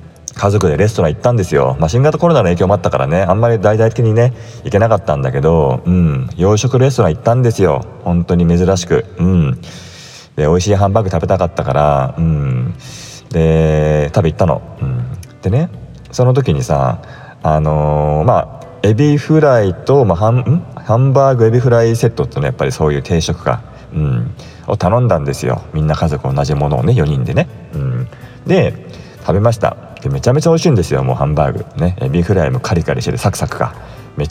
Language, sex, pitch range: Japanese, male, 85-125 Hz